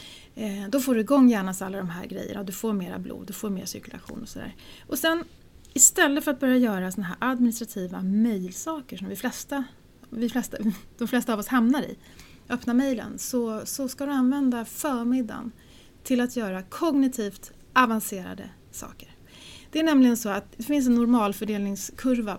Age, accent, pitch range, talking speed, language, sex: 30-49, native, 210-255 Hz, 170 wpm, Swedish, female